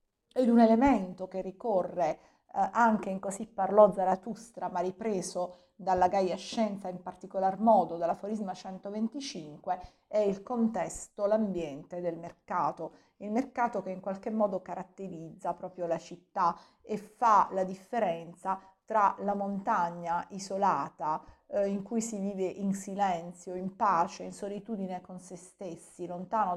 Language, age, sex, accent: Italian, 40-59, female, native